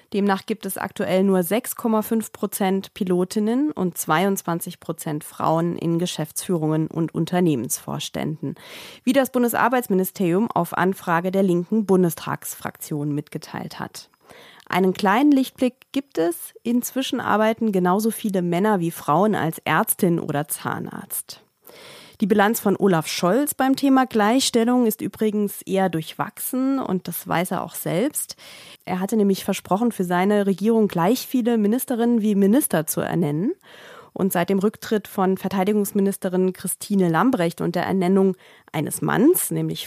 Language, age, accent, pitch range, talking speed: German, 30-49, German, 175-230 Hz, 130 wpm